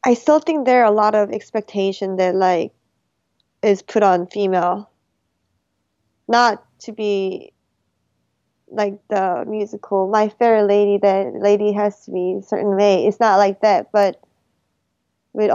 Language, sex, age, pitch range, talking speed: English, female, 20-39, 175-210 Hz, 145 wpm